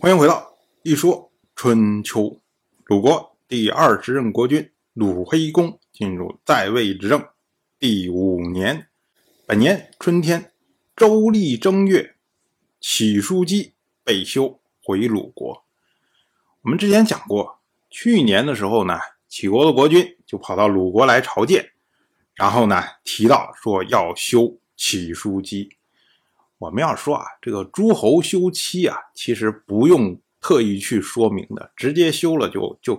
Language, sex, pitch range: Chinese, male, 100-165 Hz